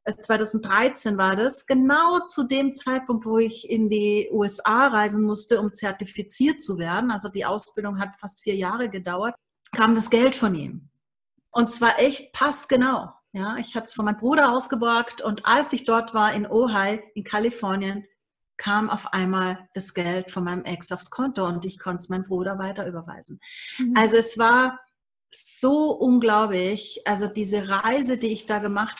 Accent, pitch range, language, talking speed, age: German, 195-235 Hz, German, 170 wpm, 40-59